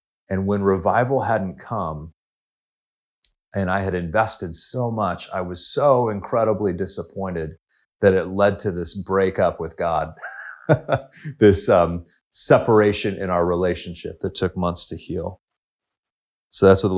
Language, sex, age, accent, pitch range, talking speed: English, male, 30-49, American, 90-105 Hz, 140 wpm